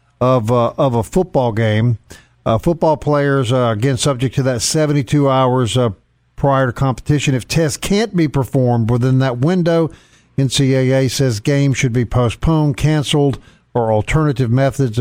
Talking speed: 150 wpm